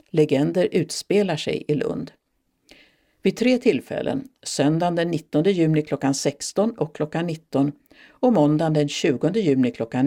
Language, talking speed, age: Swedish, 135 wpm, 60-79